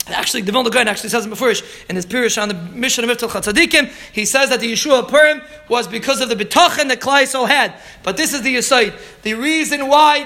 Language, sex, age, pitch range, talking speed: English, male, 30-49, 245-300 Hz, 245 wpm